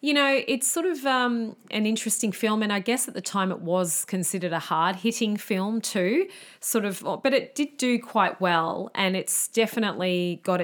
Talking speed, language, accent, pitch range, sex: 190 wpm, English, Australian, 170-195 Hz, female